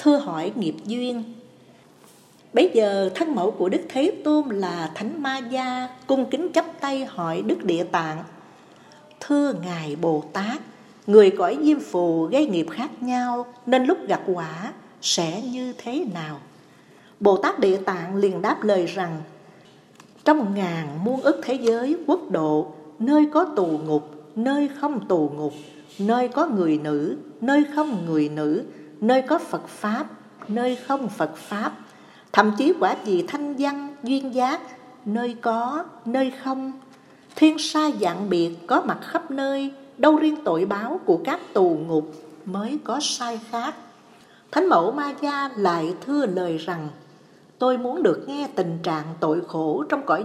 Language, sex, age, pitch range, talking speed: Vietnamese, female, 60-79, 175-280 Hz, 160 wpm